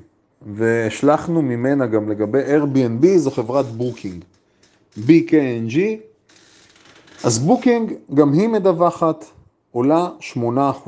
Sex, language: male, Hebrew